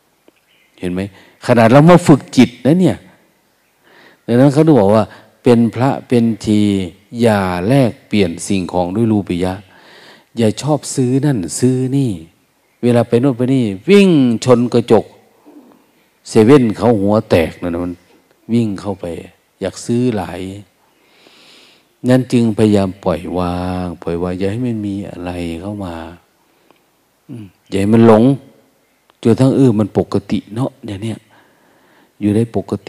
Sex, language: male, Thai